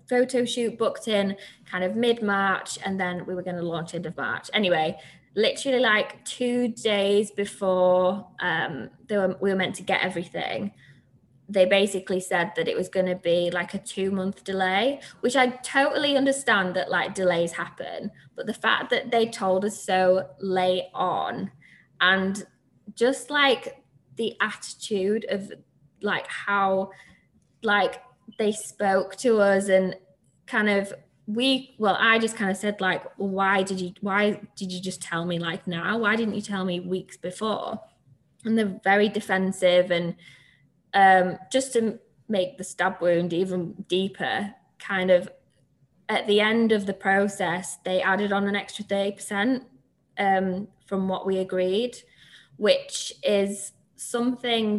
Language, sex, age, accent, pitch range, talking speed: English, female, 20-39, British, 185-215 Hz, 155 wpm